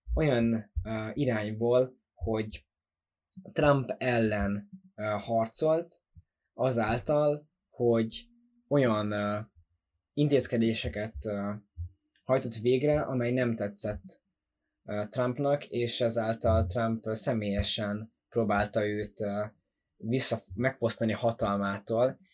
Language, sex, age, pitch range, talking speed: Hungarian, male, 20-39, 105-125 Hz, 65 wpm